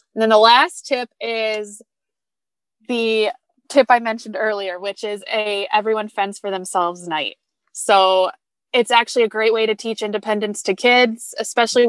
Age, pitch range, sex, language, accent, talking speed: 20-39, 200-240 Hz, female, English, American, 155 wpm